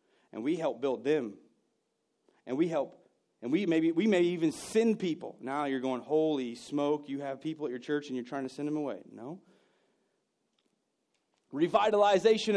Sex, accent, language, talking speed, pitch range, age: male, American, English, 170 wpm, 150-195 Hz, 30-49